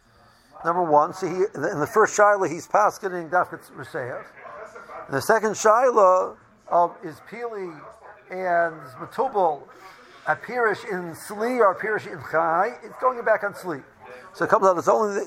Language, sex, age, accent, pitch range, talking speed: English, male, 50-69, American, 165-215 Hz, 155 wpm